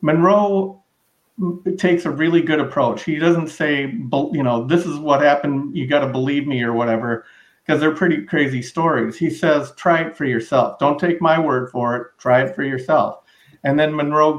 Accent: American